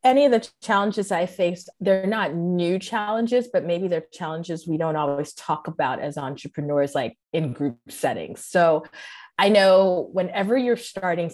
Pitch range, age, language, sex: 155-220 Hz, 30-49, English, female